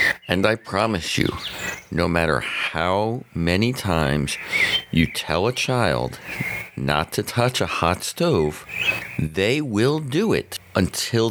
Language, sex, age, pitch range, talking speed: English, male, 50-69, 80-105 Hz, 125 wpm